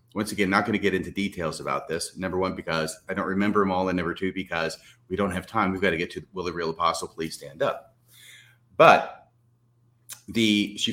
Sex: male